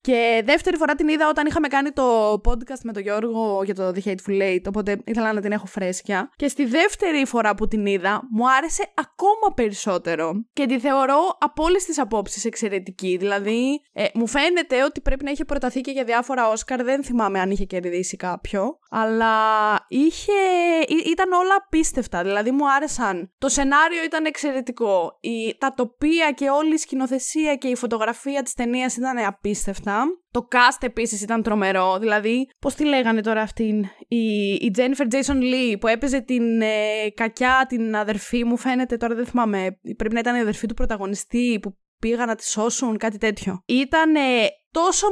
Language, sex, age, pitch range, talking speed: Greek, female, 20-39, 210-280 Hz, 170 wpm